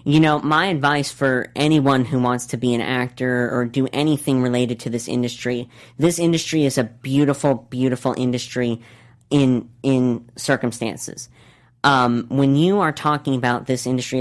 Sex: female